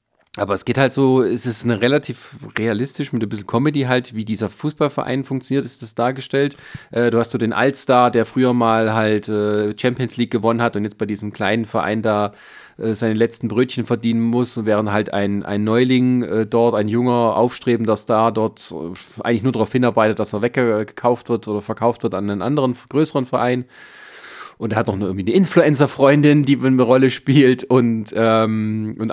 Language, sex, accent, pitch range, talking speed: German, male, German, 110-130 Hz, 180 wpm